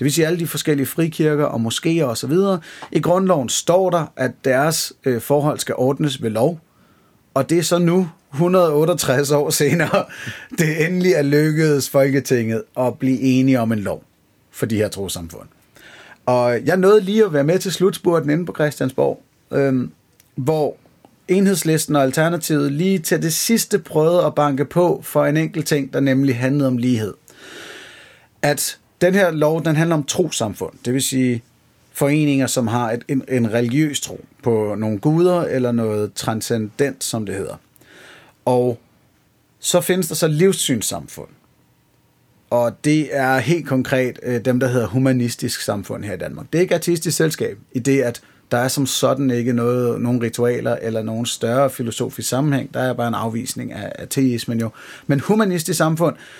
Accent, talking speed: native, 165 wpm